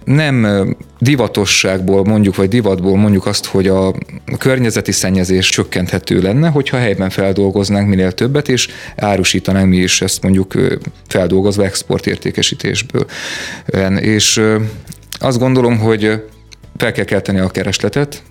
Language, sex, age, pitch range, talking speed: Hungarian, male, 30-49, 95-120 Hz, 115 wpm